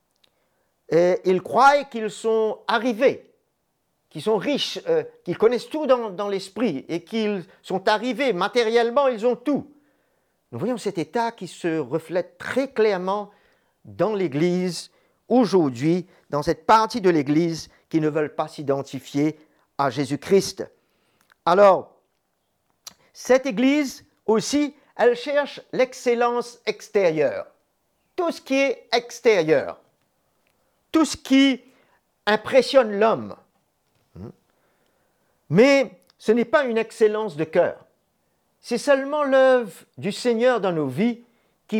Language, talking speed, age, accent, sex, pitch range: French, 120 wpm, 50-69, French, male, 170-245 Hz